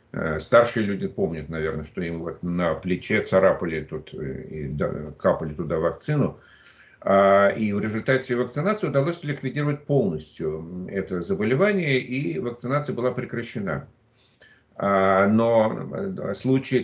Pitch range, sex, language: 95-130 Hz, male, Russian